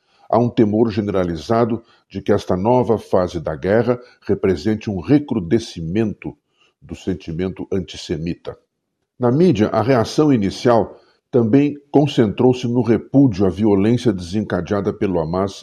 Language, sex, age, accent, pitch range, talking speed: Portuguese, male, 50-69, Brazilian, 95-120 Hz, 120 wpm